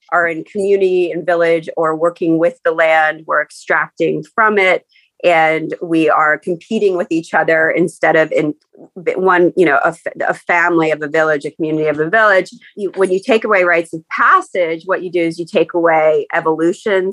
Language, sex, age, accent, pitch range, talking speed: English, female, 30-49, American, 160-195 Hz, 190 wpm